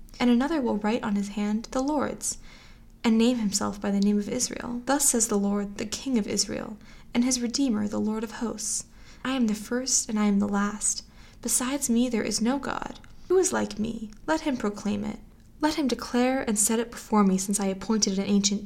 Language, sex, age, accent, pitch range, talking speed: English, female, 10-29, American, 205-245 Hz, 220 wpm